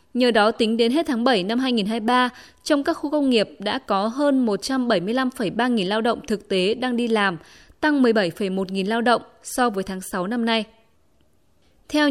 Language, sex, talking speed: Vietnamese, female, 190 wpm